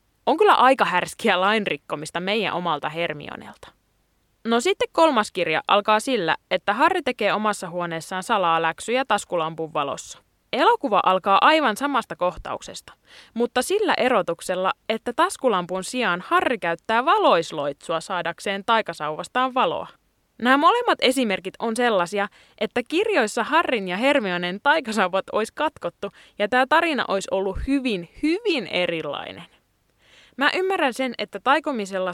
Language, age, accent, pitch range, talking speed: Finnish, 20-39, native, 180-270 Hz, 125 wpm